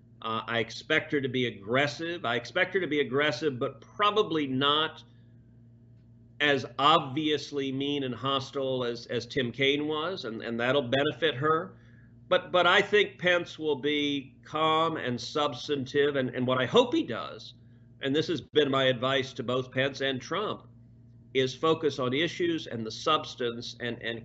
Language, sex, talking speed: English, male, 170 wpm